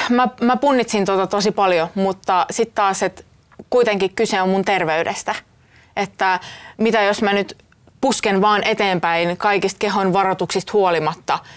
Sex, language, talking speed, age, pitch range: female, Finnish, 140 wpm, 20-39, 170-210 Hz